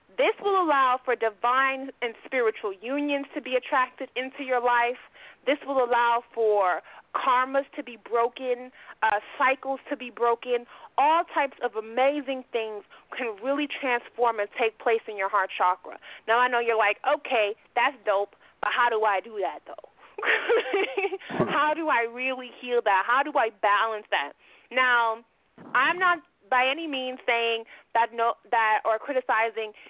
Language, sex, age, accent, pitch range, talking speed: English, female, 30-49, American, 220-270 Hz, 160 wpm